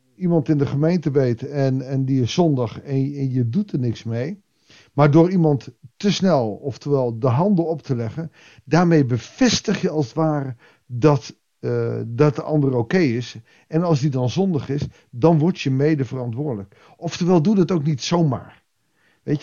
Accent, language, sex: Dutch, Dutch, male